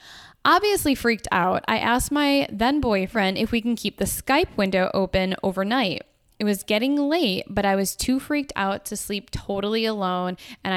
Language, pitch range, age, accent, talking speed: English, 195-275 Hz, 10-29, American, 175 wpm